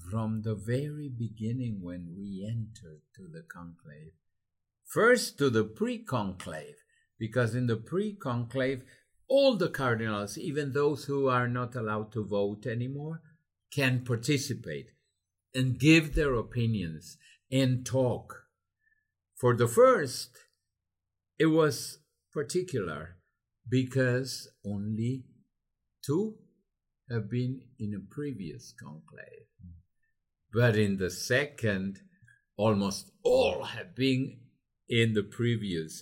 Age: 60-79